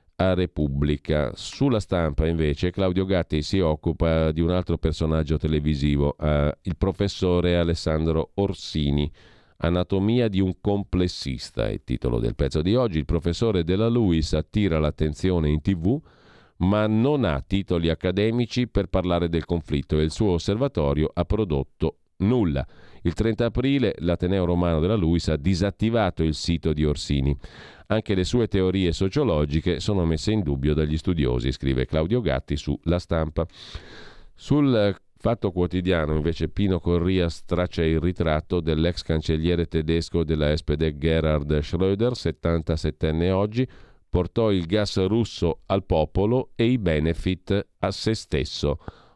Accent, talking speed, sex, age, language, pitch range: native, 140 wpm, male, 40-59, Italian, 80-100 Hz